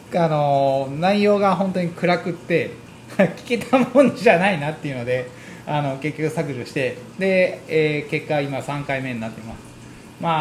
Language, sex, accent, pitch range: Japanese, male, native, 140-190 Hz